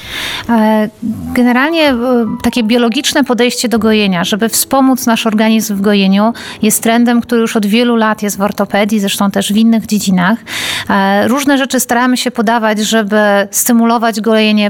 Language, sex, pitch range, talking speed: Polish, female, 205-235 Hz, 145 wpm